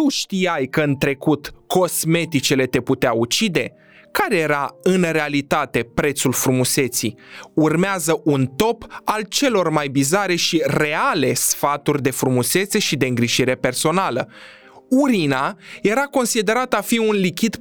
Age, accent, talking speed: 20-39, native, 130 wpm